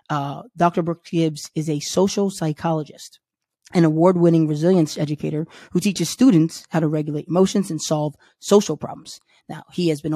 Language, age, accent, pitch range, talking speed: English, 20-39, American, 150-175 Hz, 165 wpm